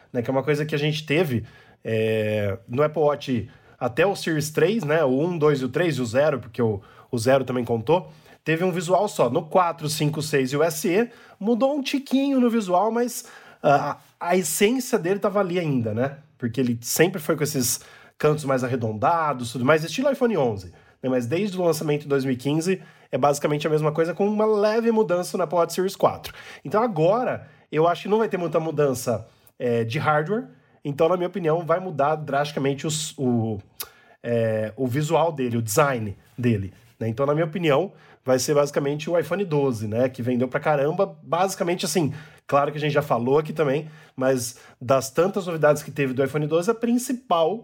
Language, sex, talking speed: Portuguese, male, 200 wpm